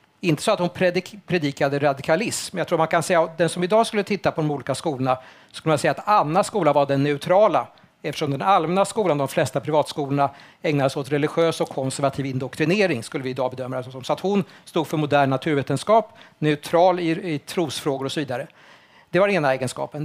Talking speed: 205 wpm